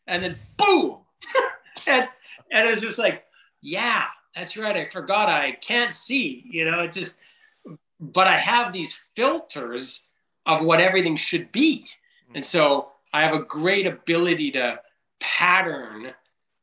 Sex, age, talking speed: male, 40-59, 145 wpm